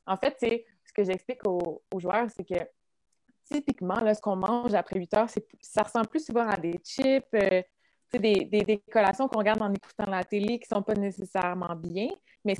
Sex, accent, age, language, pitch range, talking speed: female, Canadian, 20-39, French, 185-235 Hz, 210 wpm